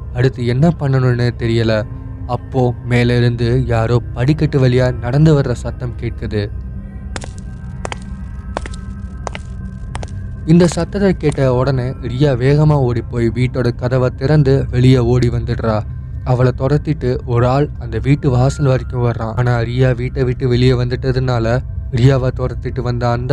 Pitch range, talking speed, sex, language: 115-130 Hz, 120 wpm, male, Tamil